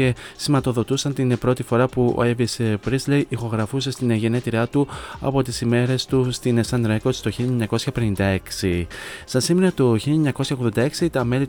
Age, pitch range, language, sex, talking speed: 30-49, 115-135 Hz, Greek, male, 145 wpm